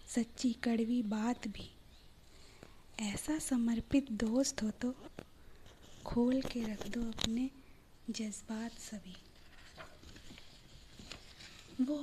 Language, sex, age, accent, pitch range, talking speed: Hindi, female, 20-39, native, 195-245 Hz, 85 wpm